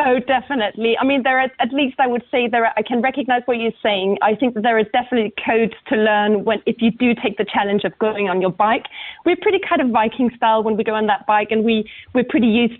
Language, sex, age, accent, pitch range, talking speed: English, female, 30-49, British, 200-235 Hz, 265 wpm